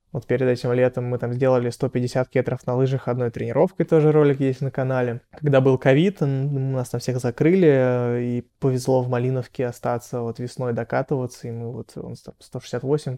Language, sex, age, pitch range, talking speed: Russian, male, 20-39, 125-145 Hz, 165 wpm